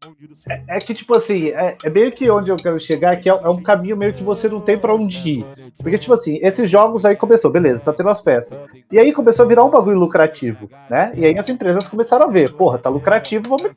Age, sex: 30-49, male